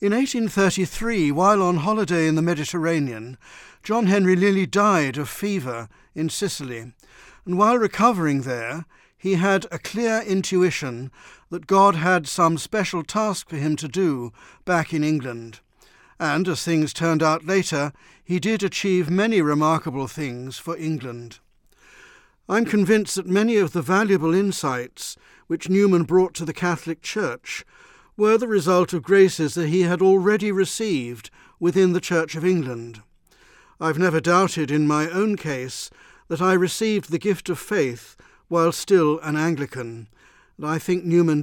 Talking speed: 150 wpm